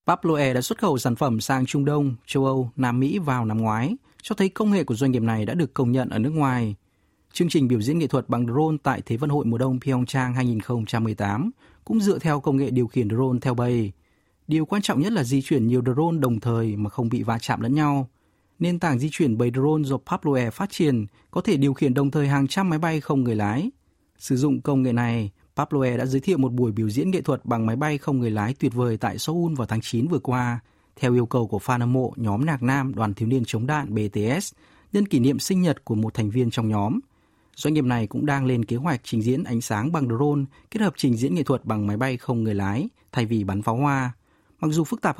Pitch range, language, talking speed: 115-145 Hz, Vietnamese, 250 wpm